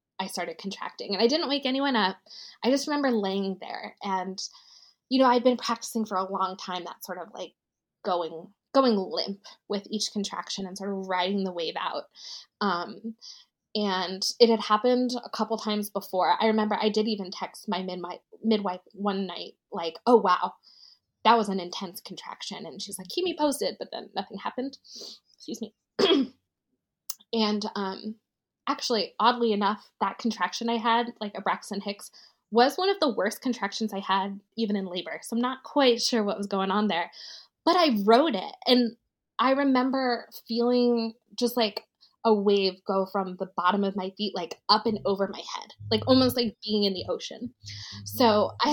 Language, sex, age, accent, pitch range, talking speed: English, female, 20-39, American, 195-240 Hz, 185 wpm